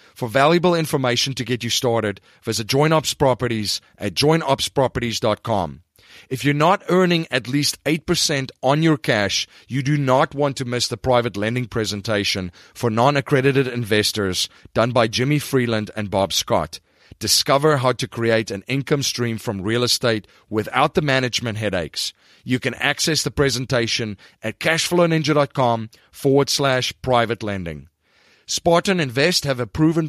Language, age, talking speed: English, 40-59, 140 wpm